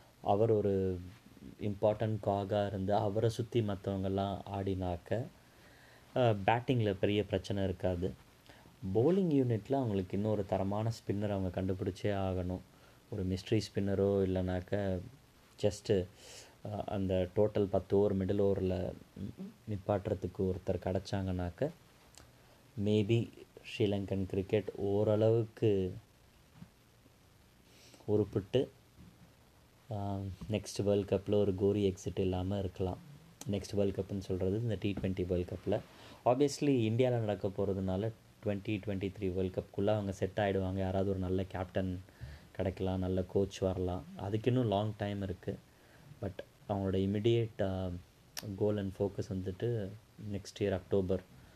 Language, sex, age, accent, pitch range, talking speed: Tamil, male, 20-39, native, 95-105 Hz, 110 wpm